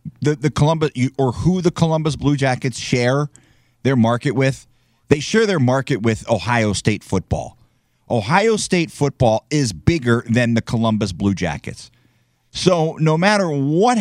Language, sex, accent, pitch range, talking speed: English, male, American, 120-165 Hz, 150 wpm